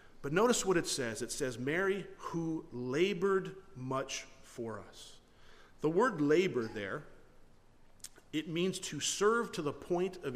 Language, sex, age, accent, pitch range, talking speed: English, male, 40-59, American, 130-195 Hz, 145 wpm